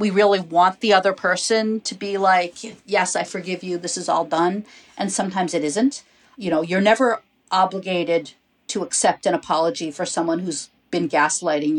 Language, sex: English, female